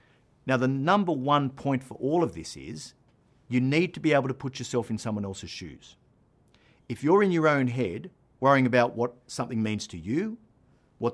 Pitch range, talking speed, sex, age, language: 115-150 Hz, 195 wpm, male, 50-69, English